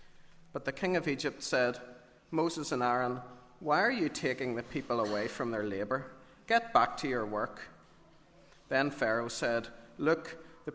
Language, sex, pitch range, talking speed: English, male, 115-140 Hz, 160 wpm